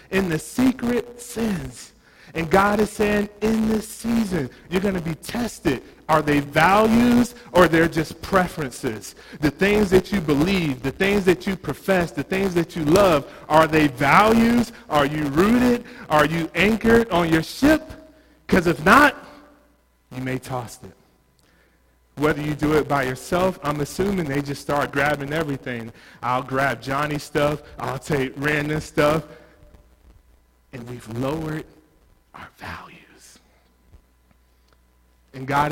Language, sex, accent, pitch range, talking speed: English, male, American, 135-195 Hz, 145 wpm